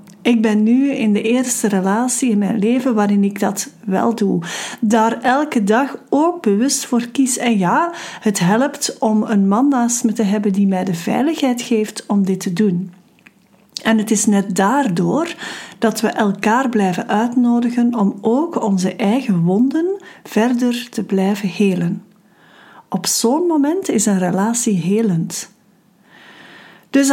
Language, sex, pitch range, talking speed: Dutch, female, 200-245 Hz, 155 wpm